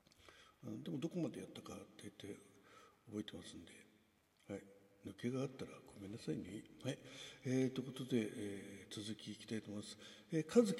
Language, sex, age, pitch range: Japanese, male, 60-79, 105-155 Hz